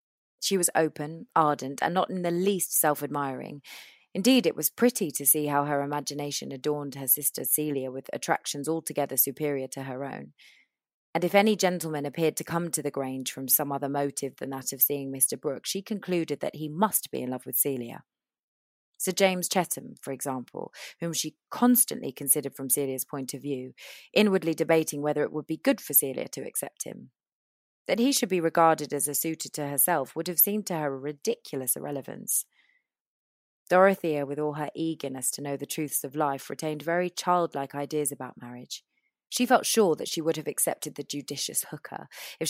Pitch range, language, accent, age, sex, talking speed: 140-170 Hz, English, British, 30-49, female, 190 wpm